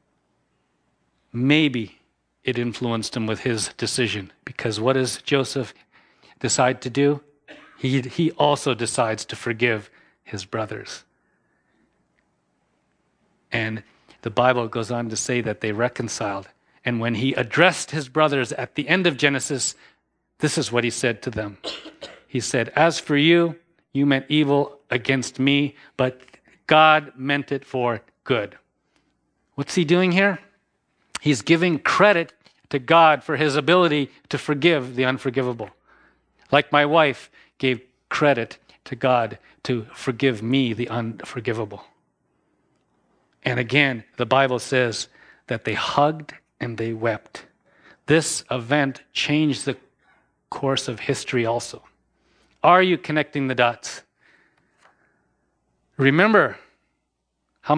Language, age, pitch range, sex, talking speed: English, 40-59, 120-150 Hz, male, 125 wpm